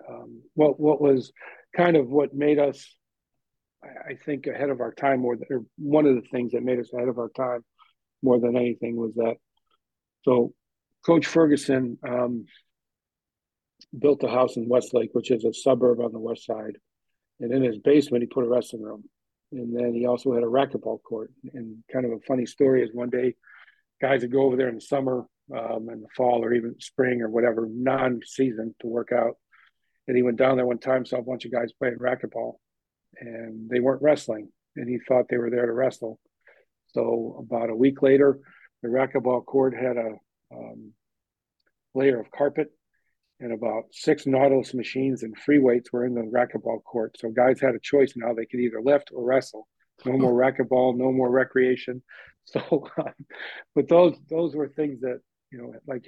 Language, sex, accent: English, male, American